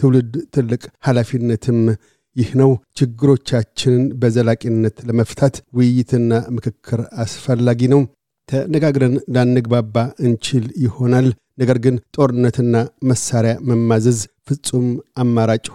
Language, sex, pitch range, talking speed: Amharic, male, 115-130 Hz, 90 wpm